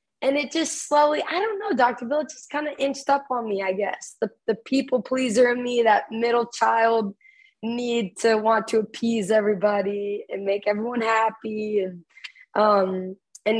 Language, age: English, 20-39